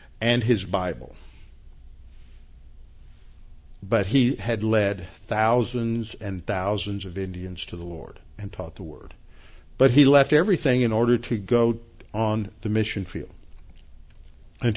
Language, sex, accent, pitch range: English, male, American, 115-160 Hz